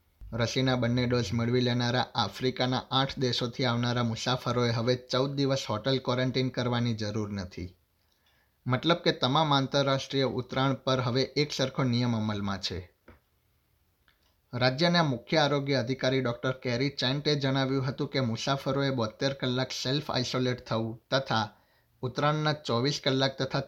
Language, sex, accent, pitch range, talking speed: Gujarati, male, native, 115-135 Hz, 130 wpm